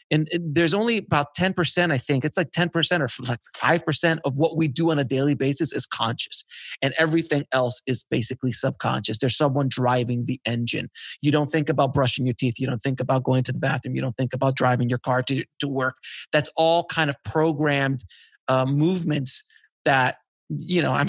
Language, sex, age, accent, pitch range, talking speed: English, male, 30-49, American, 135-175 Hz, 200 wpm